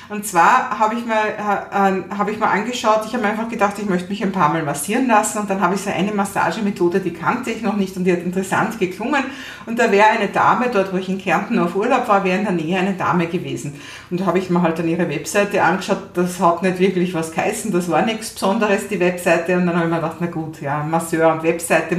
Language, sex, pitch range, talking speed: German, female, 180-235 Hz, 255 wpm